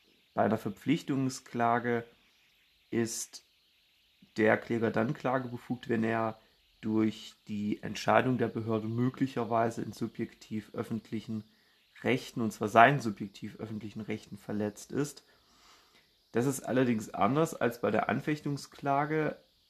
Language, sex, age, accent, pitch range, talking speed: German, male, 30-49, German, 110-130 Hz, 110 wpm